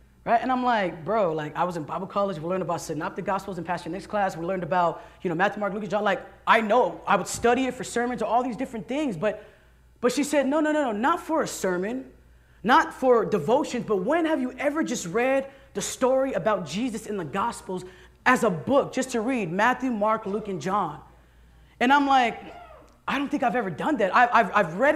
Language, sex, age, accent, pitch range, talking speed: English, female, 20-39, American, 210-300 Hz, 235 wpm